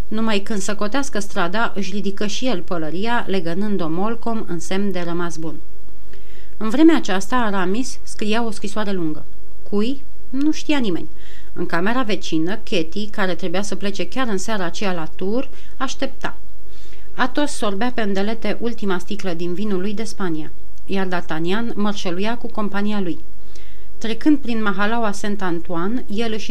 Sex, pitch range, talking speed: female, 185-230 Hz, 150 wpm